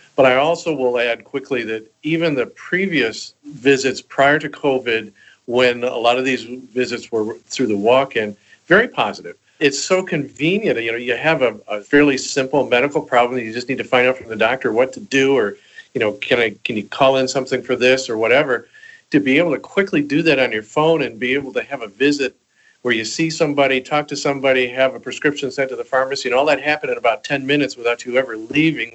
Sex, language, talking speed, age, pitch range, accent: male, English, 225 wpm, 50-69, 115-140 Hz, American